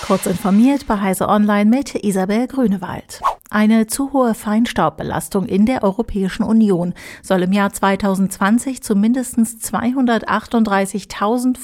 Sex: female